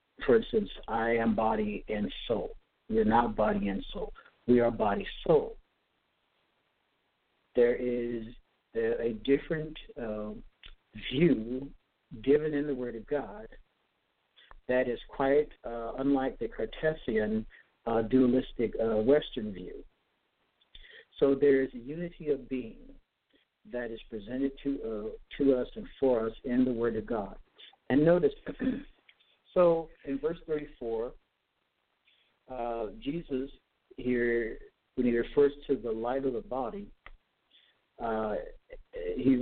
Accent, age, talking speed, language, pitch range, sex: American, 60-79, 125 wpm, English, 120-150 Hz, male